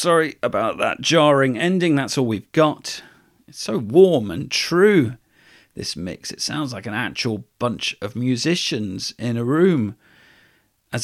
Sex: male